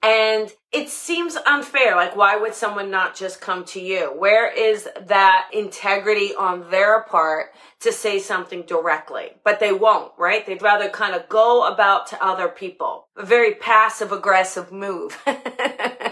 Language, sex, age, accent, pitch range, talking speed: English, female, 40-59, American, 190-265 Hz, 155 wpm